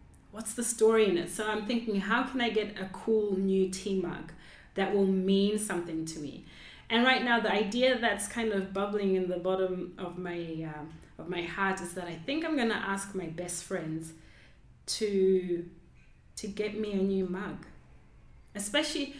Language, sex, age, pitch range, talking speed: English, female, 20-39, 185-265 Hz, 190 wpm